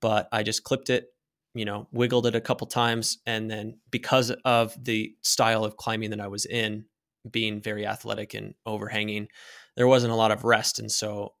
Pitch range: 110-125 Hz